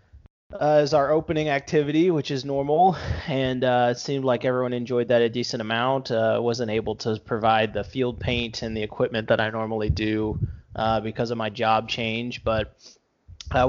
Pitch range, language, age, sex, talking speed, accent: 110-130 Hz, English, 20-39, male, 185 wpm, American